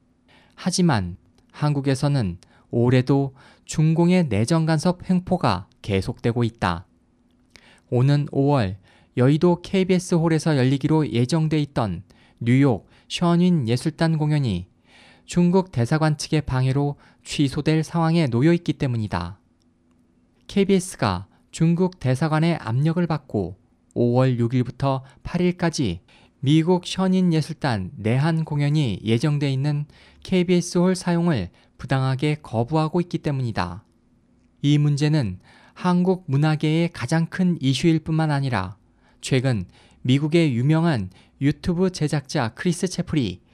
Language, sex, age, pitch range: Korean, male, 20-39, 120-165 Hz